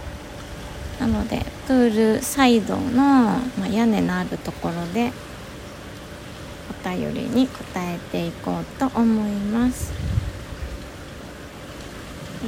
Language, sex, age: Japanese, female, 20-39